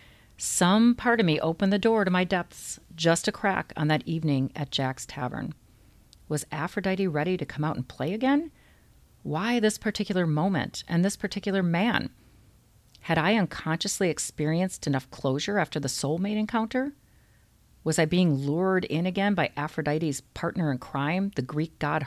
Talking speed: 165 wpm